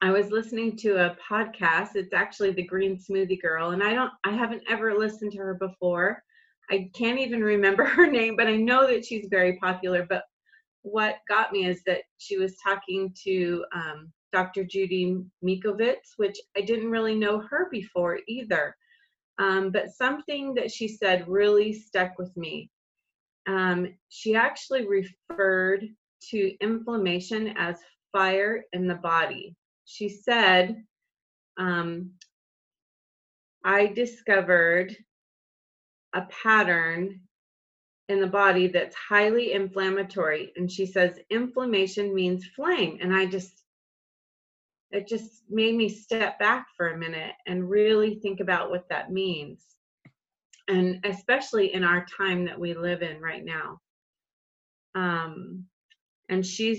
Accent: American